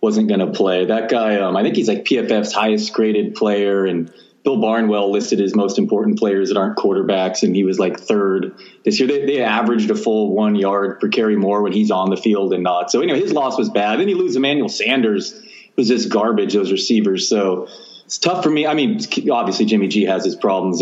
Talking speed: 230 wpm